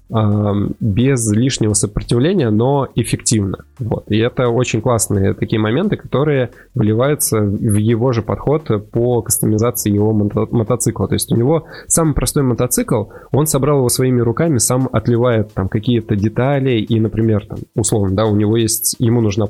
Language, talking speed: Russian, 155 wpm